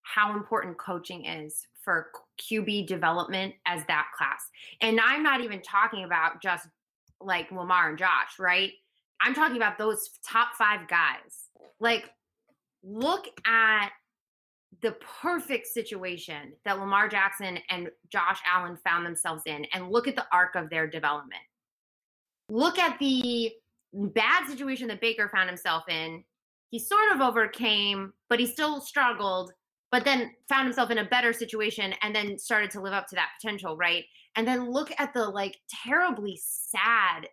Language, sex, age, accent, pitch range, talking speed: English, female, 20-39, American, 175-230 Hz, 155 wpm